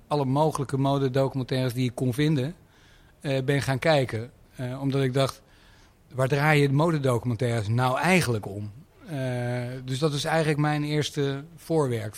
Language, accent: Dutch, Dutch